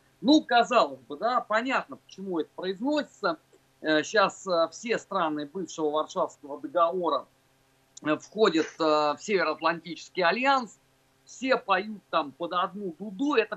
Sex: male